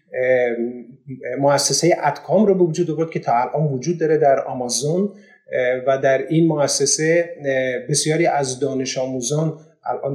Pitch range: 125-150 Hz